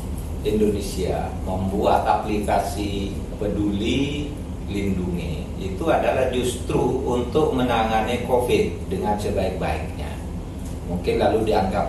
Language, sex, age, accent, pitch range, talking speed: Indonesian, male, 40-59, native, 85-105 Hz, 80 wpm